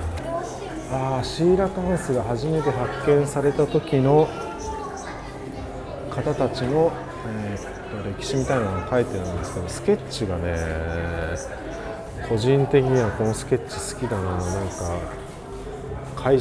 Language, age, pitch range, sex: Japanese, 40-59, 100-145 Hz, male